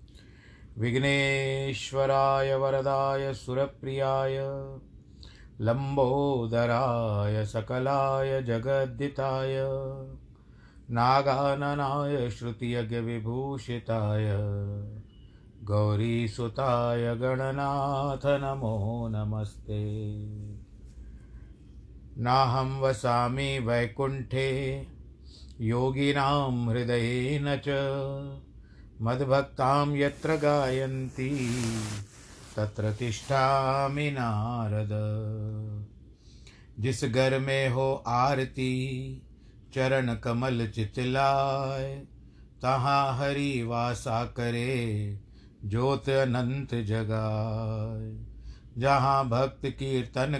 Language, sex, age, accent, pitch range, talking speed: Hindi, male, 50-69, native, 115-135 Hz, 50 wpm